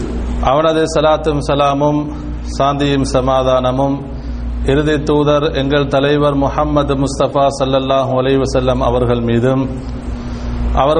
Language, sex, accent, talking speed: English, male, Indian, 105 wpm